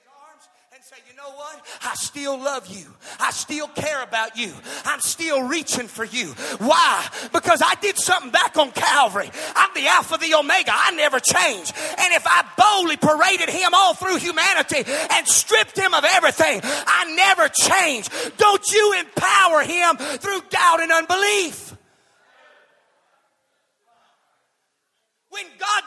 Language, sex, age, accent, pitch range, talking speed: English, male, 30-49, American, 315-405 Hz, 145 wpm